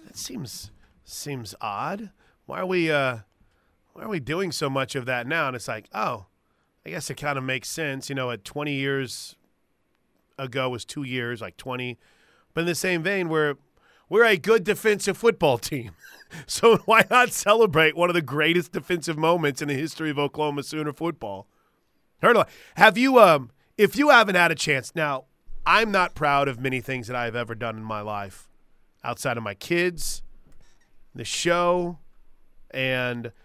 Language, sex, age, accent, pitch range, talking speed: English, male, 30-49, American, 115-175 Hz, 180 wpm